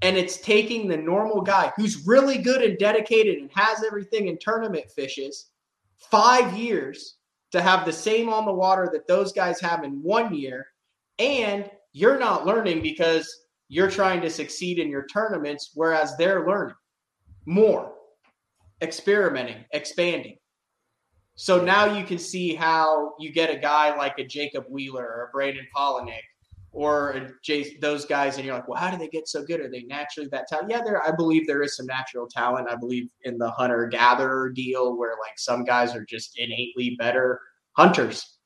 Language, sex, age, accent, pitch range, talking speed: English, male, 30-49, American, 125-180 Hz, 175 wpm